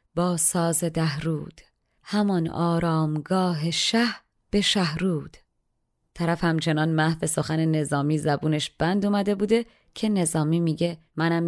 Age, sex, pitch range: 30-49, female, 160-210 Hz